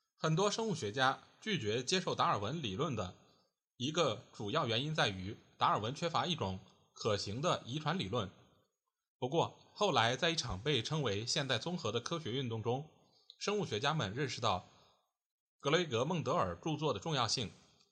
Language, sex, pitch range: Chinese, male, 110-160 Hz